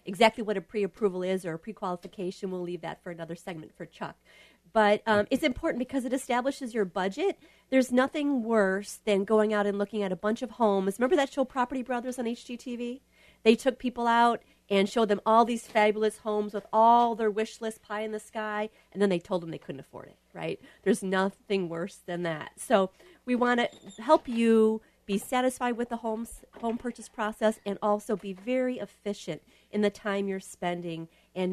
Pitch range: 190-240 Hz